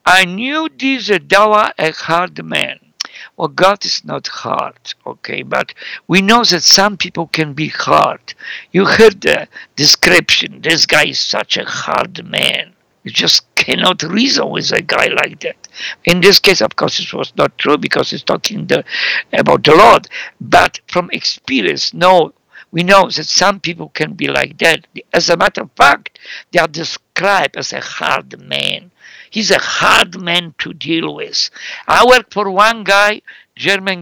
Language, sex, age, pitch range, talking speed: English, male, 60-79, 175-230 Hz, 170 wpm